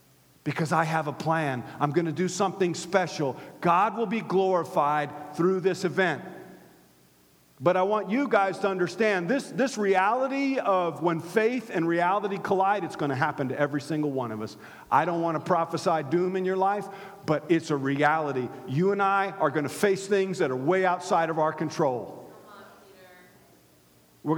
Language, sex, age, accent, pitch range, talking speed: English, male, 50-69, American, 165-235 Hz, 180 wpm